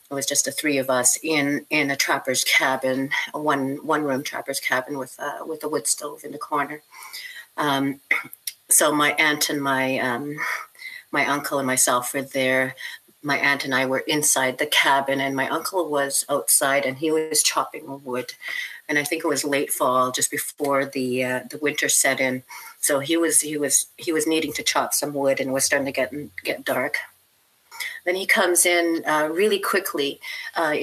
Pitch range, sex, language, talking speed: 140-165 Hz, female, English, 200 wpm